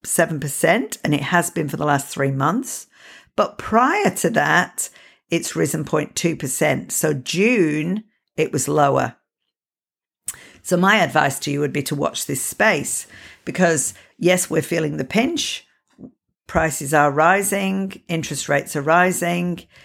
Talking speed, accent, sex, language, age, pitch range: 135 wpm, British, female, English, 50-69, 155-185 Hz